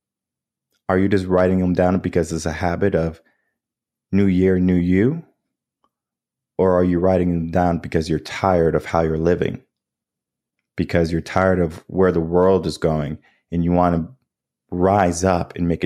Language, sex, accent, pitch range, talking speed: English, male, American, 85-105 Hz, 170 wpm